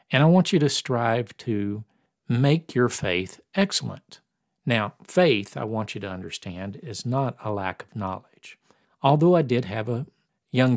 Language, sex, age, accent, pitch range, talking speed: English, male, 50-69, American, 110-150 Hz, 165 wpm